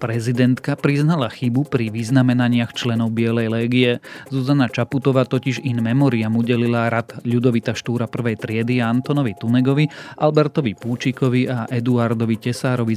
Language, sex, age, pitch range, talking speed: Slovak, male, 30-49, 110-130 Hz, 120 wpm